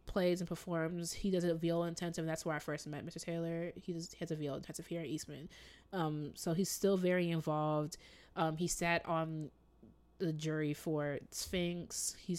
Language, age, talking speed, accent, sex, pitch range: English, 20-39, 185 wpm, American, female, 155-180 Hz